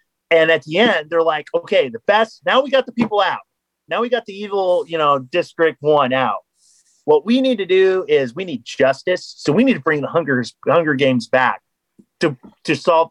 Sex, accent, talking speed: male, American, 215 wpm